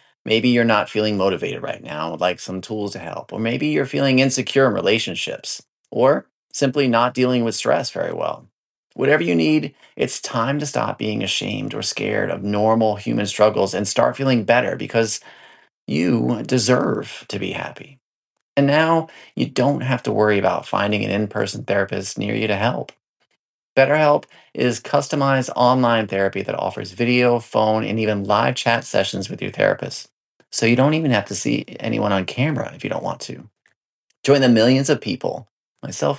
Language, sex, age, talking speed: English, male, 30-49, 175 wpm